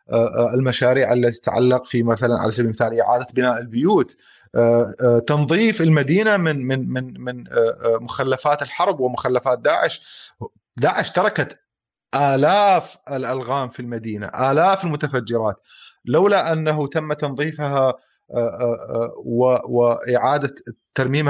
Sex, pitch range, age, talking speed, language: male, 120-145 Hz, 30-49, 85 wpm, Arabic